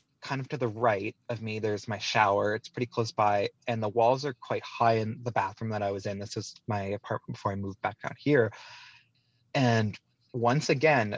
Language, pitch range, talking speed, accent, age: English, 115-135 Hz, 215 wpm, American, 20-39